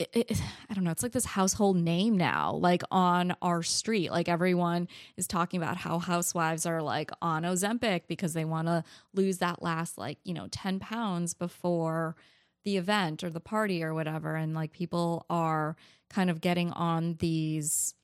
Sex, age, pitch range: female, 20-39, 165-195 Hz